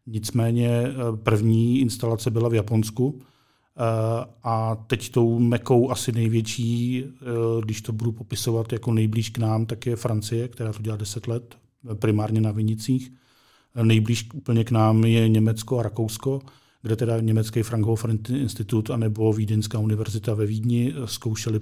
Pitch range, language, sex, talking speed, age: 110-120 Hz, Czech, male, 140 wpm, 40-59